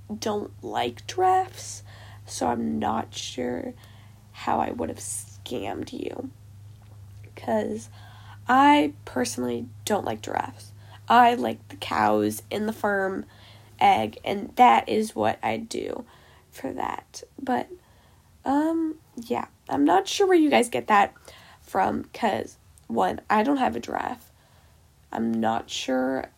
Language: English